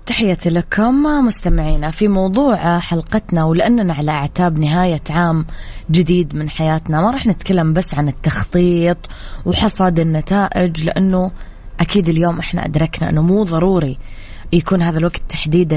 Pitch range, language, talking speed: 155-190 Hz, English, 130 wpm